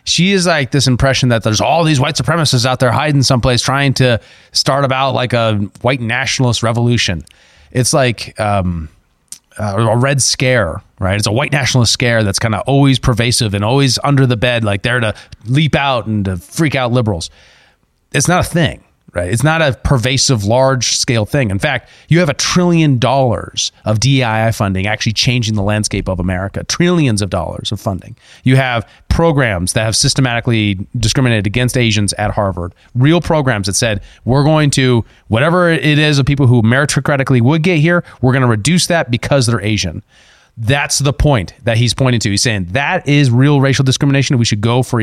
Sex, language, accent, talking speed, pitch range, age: male, English, American, 190 wpm, 105-135 Hz, 30-49